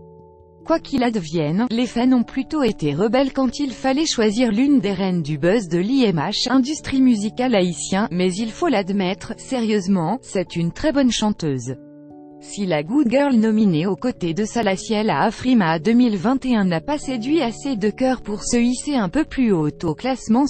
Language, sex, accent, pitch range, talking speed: French, female, French, 175-255 Hz, 175 wpm